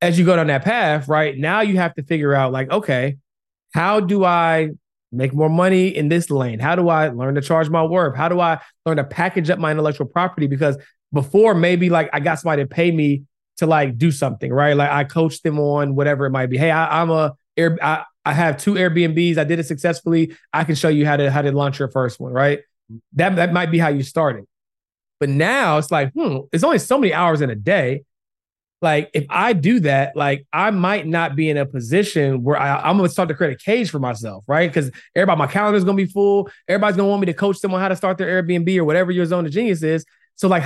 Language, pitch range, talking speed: English, 145-175 Hz, 245 wpm